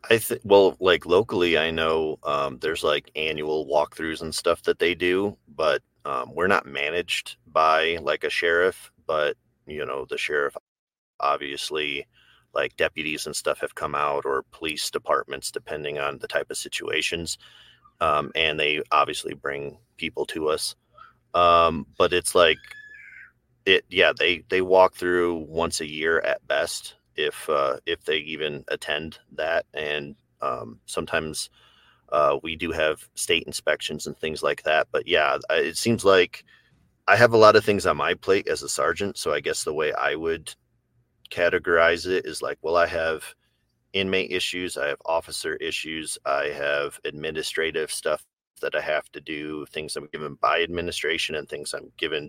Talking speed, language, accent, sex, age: 170 wpm, English, American, male, 30-49